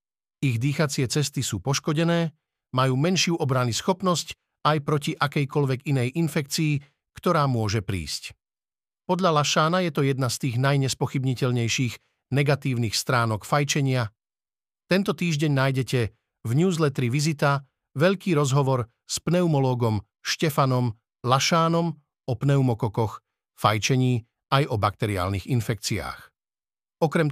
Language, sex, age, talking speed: Slovak, male, 50-69, 105 wpm